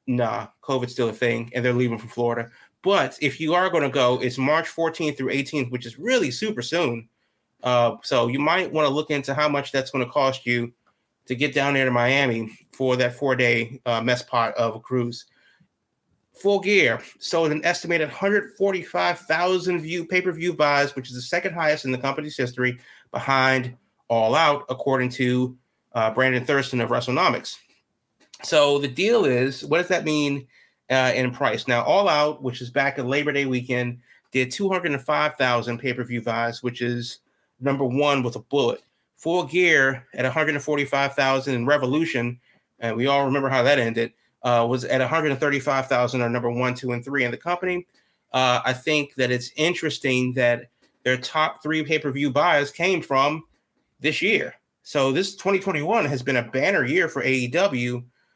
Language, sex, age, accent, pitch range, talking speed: English, male, 30-49, American, 125-150 Hz, 175 wpm